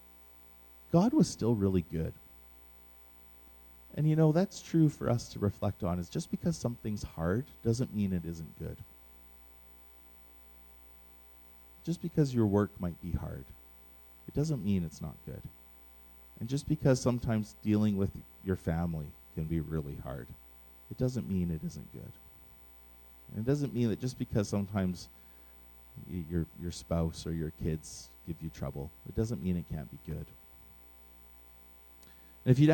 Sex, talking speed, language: male, 150 wpm, English